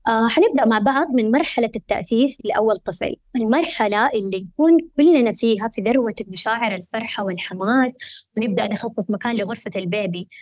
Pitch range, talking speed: 205-260 Hz, 140 wpm